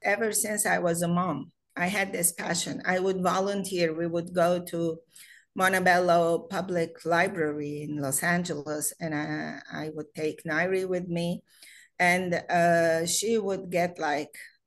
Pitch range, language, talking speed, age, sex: 170-220 Hz, English, 150 wpm, 40-59, female